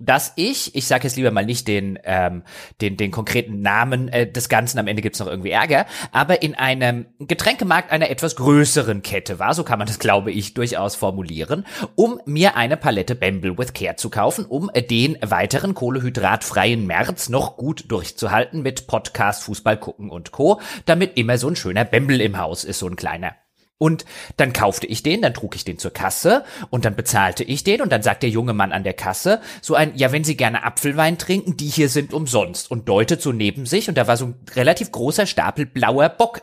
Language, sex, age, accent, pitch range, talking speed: German, male, 30-49, German, 110-155 Hz, 210 wpm